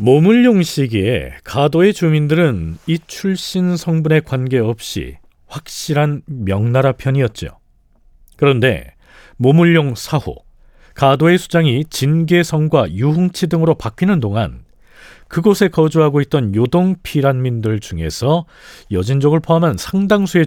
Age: 40-59